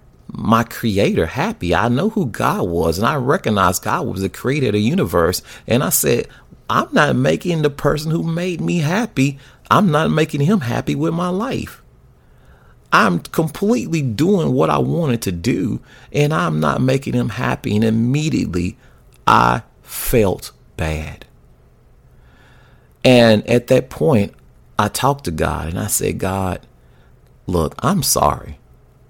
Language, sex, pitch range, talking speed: English, male, 85-130 Hz, 150 wpm